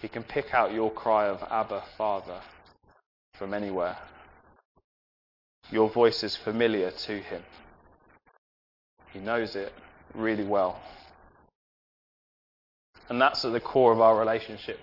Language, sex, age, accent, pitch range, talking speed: English, male, 20-39, British, 80-125 Hz, 120 wpm